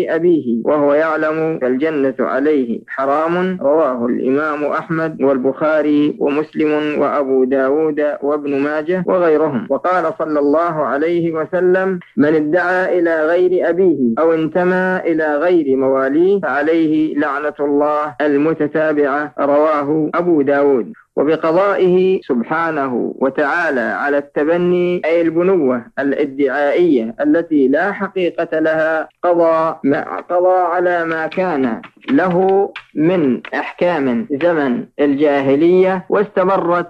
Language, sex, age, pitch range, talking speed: Arabic, male, 50-69, 150-180 Hz, 100 wpm